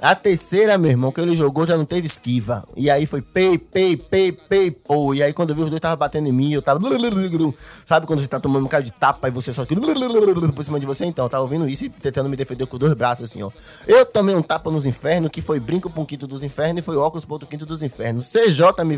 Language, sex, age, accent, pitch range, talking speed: Portuguese, male, 20-39, Brazilian, 135-185 Hz, 270 wpm